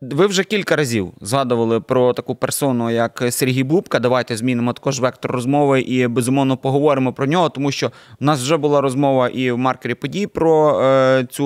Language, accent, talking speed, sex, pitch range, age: Ukrainian, native, 185 wpm, male, 130-160 Hz, 20-39